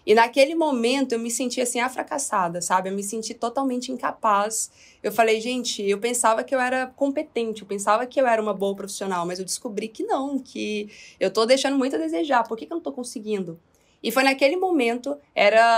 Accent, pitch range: Brazilian, 215-275 Hz